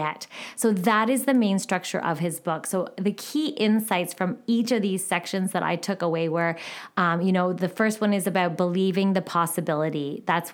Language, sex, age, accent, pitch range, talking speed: English, female, 20-39, American, 175-215 Hz, 200 wpm